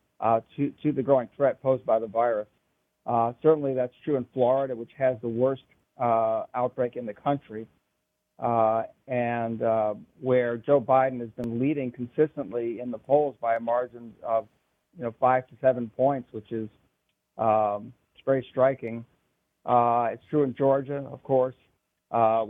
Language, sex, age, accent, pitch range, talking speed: English, male, 50-69, American, 115-135 Hz, 165 wpm